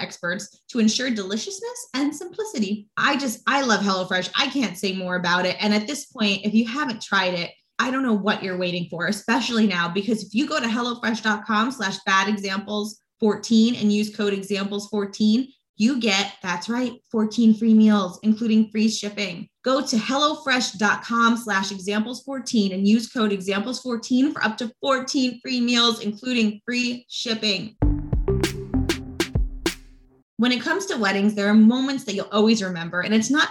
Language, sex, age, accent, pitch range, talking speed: English, female, 20-39, American, 200-255 Hz, 170 wpm